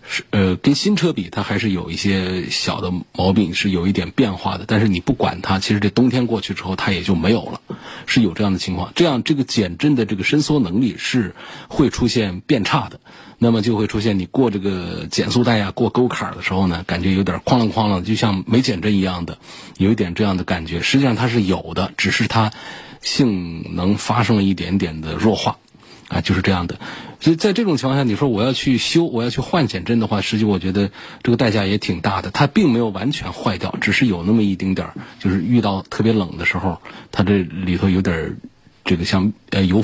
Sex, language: male, Chinese